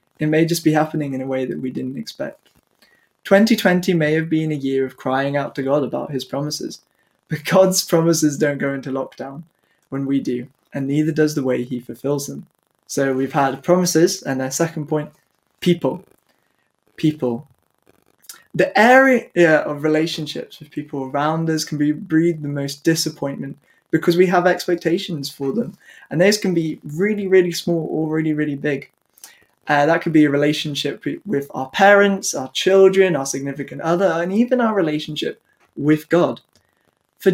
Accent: British